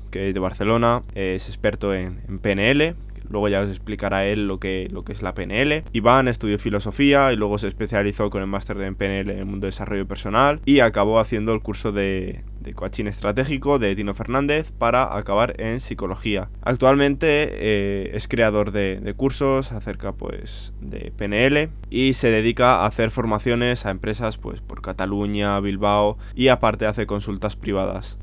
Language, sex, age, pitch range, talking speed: Spanish, male, 20-39, 100-115 Hz, 170 wpm